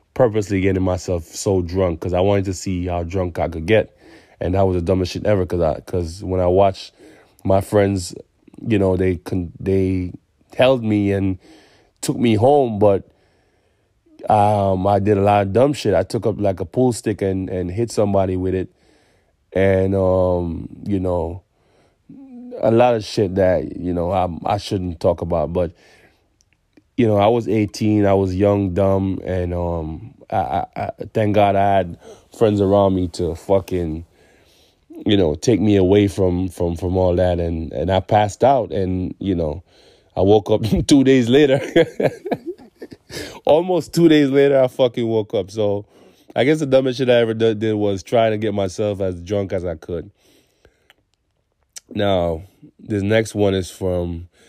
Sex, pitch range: male, 90-110 Hz